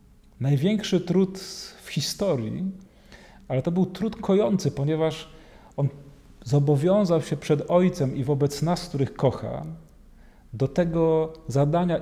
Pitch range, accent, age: 135-175 Hz, native, 40-59